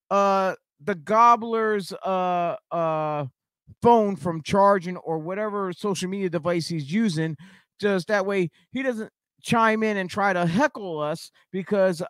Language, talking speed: English, 140 wpm